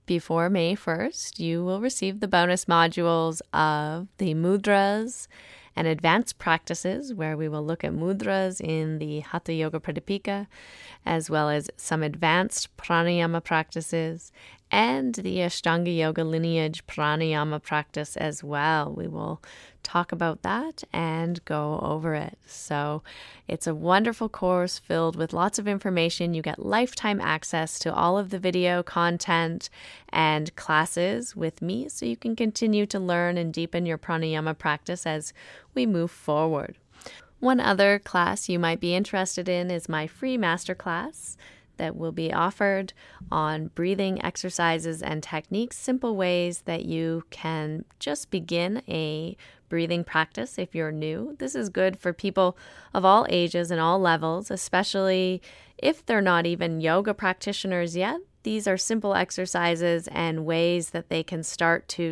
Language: English